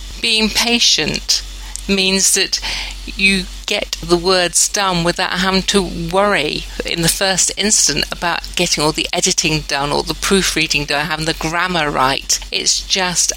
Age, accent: 50-69, British